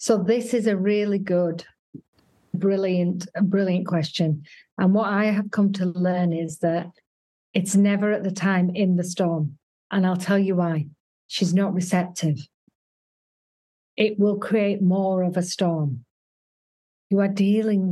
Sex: female